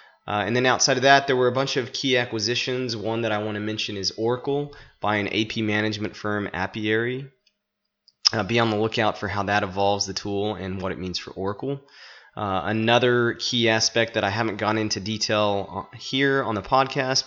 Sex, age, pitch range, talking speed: male, 20-39, 95-115 Hz, 200 wpm